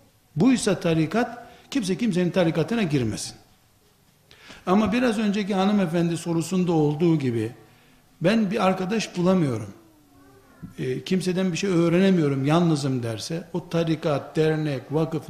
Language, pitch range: Turkish, 150-195 Hz